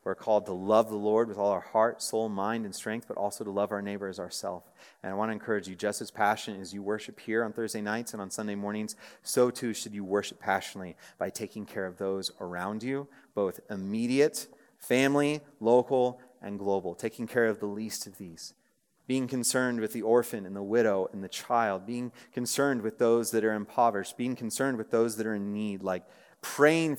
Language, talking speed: English, 215 wpm